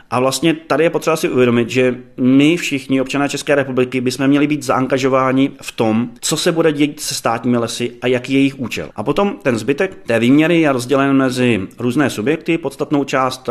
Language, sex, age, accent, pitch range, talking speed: Czech, male, 30-49, native, 125-145 Hz, 190 wpm